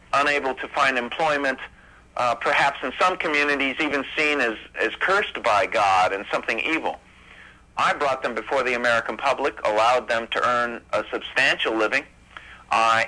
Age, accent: 50-69, American